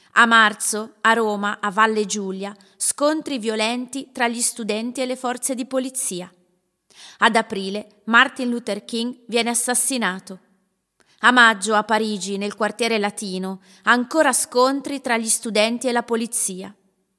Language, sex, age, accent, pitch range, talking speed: Italian, female, 30-49, native, 200-240 Hz, 135 wpm